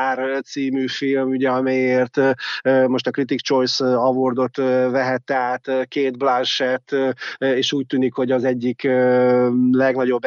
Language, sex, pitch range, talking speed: Hungarian, male, 130-140 Hz, 110 wpm